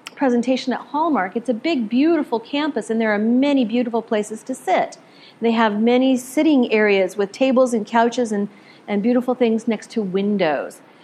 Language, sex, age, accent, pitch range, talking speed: English, female, 40-59, American, 215-260 Hz, 175 wpm